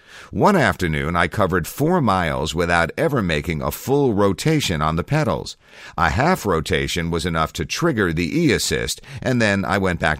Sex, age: male, 50-69